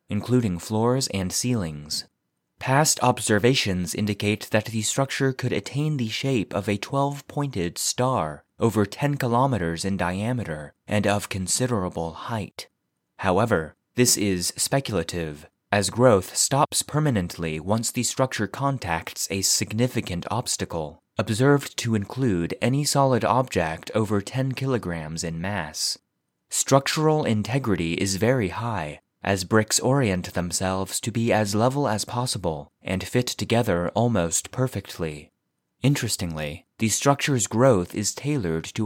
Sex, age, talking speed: male, 30-49, 125 wpm